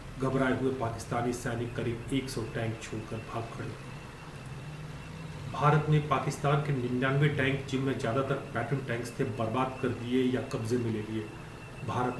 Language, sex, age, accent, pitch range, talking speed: Hindi, male, 30-49, native, 120-140 Hz, 150 wpm